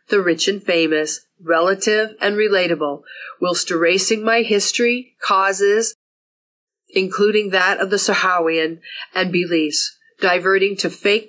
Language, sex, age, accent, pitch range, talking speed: English, female, 40-59, American, 170-200 Hz, 115 wpm